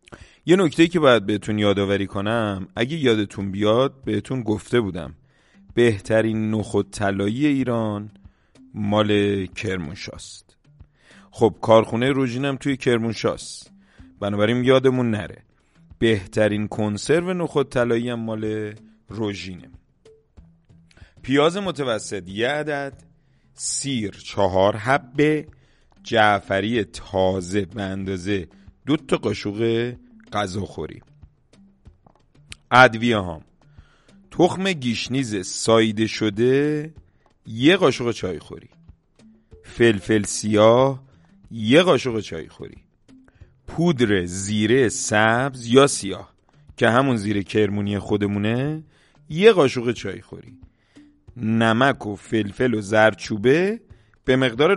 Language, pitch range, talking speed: Persian, 100-130 Hz, 95 wpm